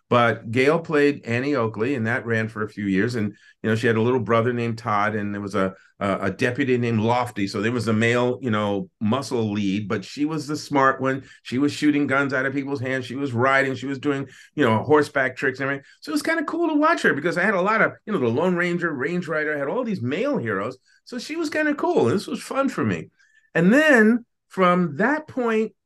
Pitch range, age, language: 115-175 Hz, 50-69, English